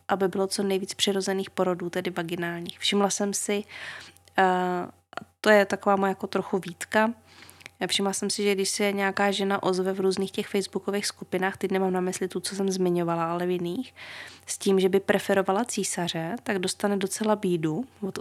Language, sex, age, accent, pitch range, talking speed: Czech, female, 20-39, native, 185-205 Hz, 180 wpm